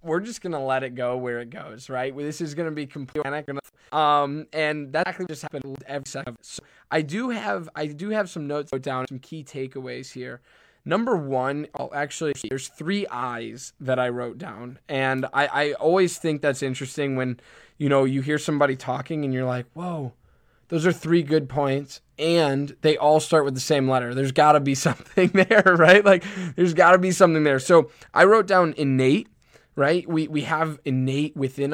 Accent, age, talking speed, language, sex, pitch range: American, 10-29, 200 wpm, English, male, 135-160 Hz